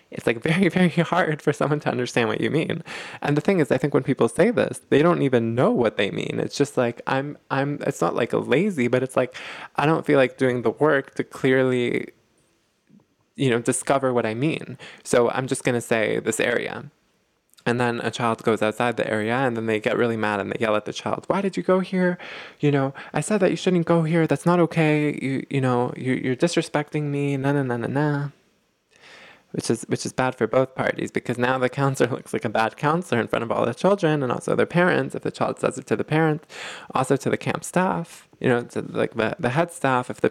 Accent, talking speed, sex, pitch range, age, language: American, 245 wpm, male, 125-160 Hz, 20-39, English